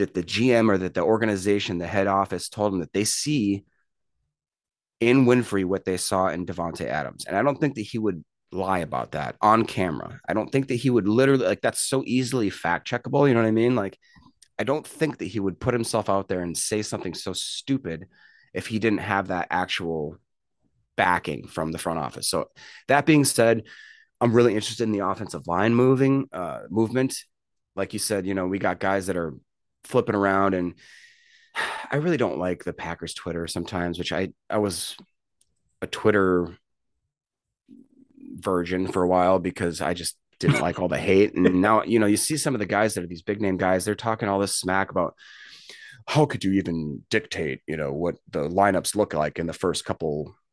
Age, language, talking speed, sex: 30-49, English, 205 wpm, male